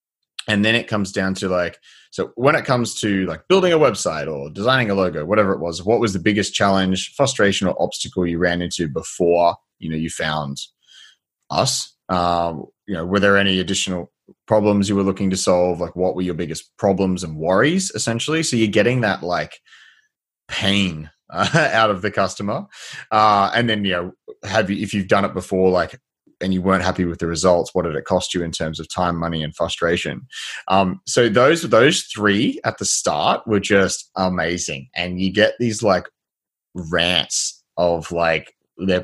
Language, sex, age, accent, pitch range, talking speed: English, male, 20-39, Australian, 85-105 Hz, 190 wpm